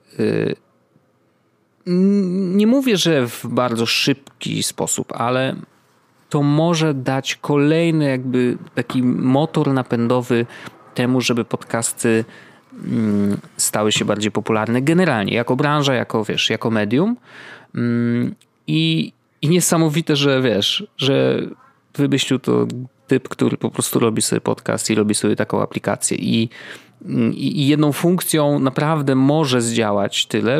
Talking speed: 115 wpm